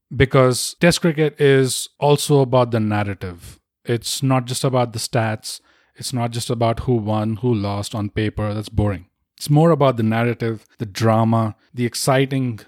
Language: English